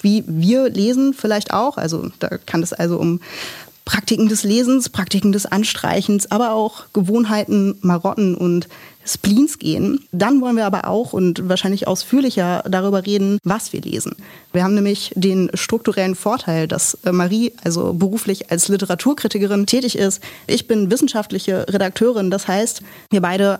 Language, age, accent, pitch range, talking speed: German, 30-49, German, 180-215 Hz, 150 wpm